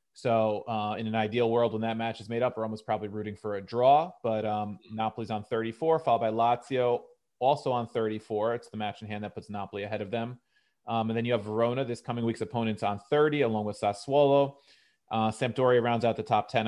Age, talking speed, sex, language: 30-49, 225 wpm, male, English